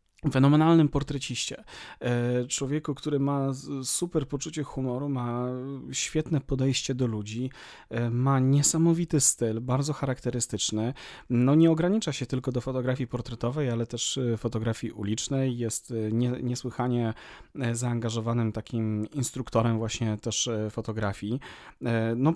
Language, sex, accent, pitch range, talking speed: Polish, male, native, 115-145 Hz, 105 wpm